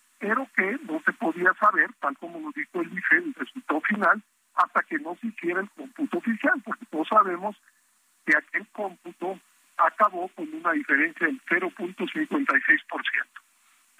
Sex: male